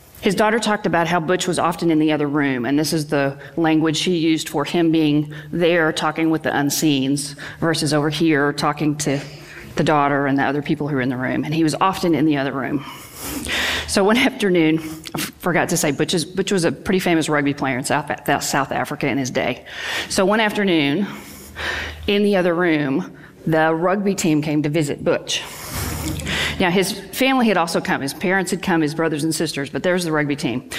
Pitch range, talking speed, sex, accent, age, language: 150-185 Hz, 205 wpm, female, American, 40-59, English